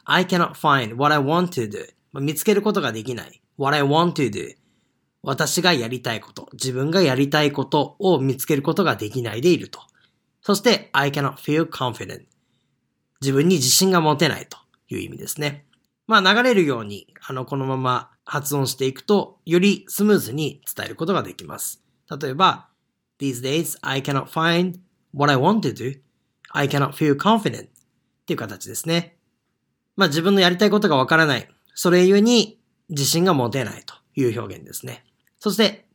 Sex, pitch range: male, 135-180 Hz